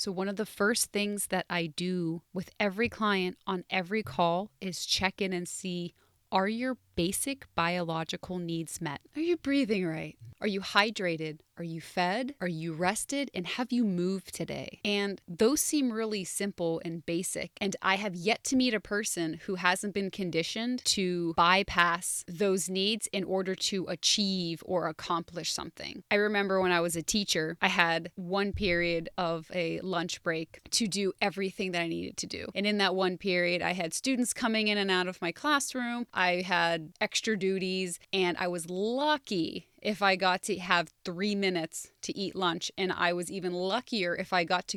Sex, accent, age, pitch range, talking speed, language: female, American, 20-39, 175-205 Hz, 185 wpm, English